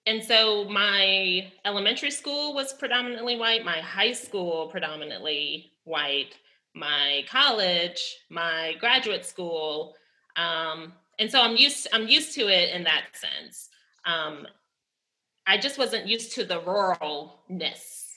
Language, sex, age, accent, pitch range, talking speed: English, female, 20-39, American, 185-265 Hz, 130 wpm